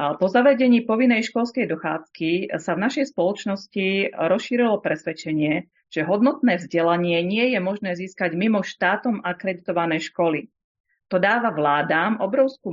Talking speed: 125 wpm